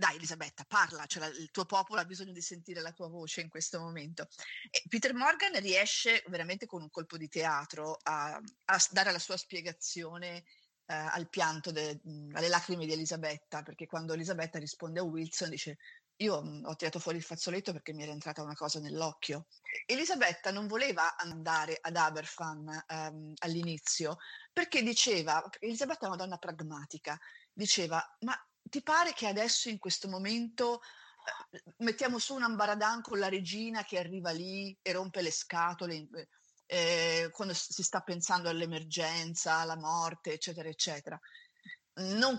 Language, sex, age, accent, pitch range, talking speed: Italian, female, 30-49, native, 160-210 Hz, 150 wpm